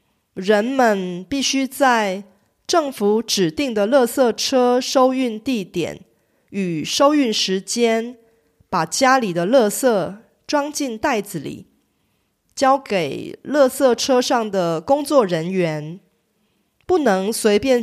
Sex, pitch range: female, 195-260 Hz